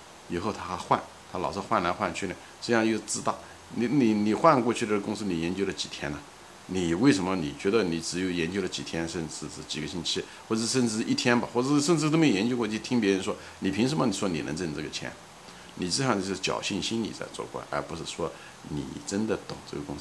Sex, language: male, Chinese